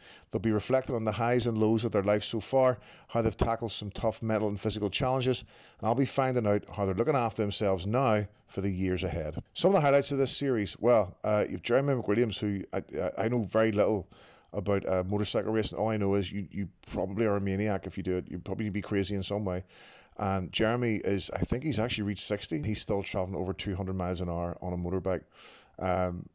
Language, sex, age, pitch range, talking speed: English, male, 30-49, 95-115 Hz, 230 wpm